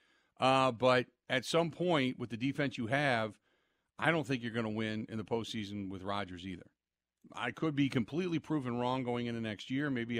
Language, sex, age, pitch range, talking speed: English, male, 50-69, 110-135 Hz, 200 wpm